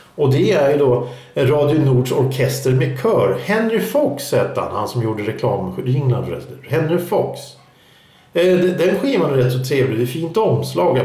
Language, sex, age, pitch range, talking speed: Swedish, male, 50-69, 120-160 Hz, 170 wpm